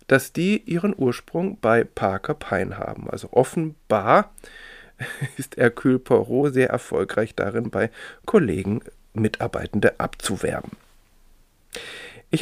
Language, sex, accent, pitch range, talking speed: German, male, German, 115-150 Hz, 100 wpm